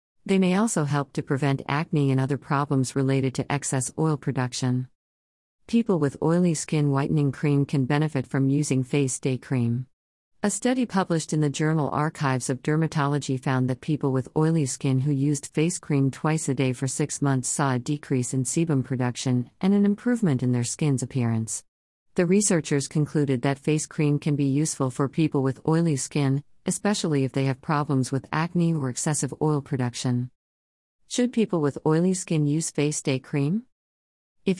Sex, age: female, 50-69